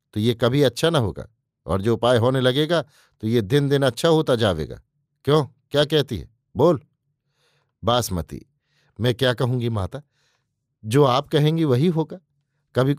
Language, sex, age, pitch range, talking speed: Hindi, male, 50-69, 125-145 Hz, 150 wpm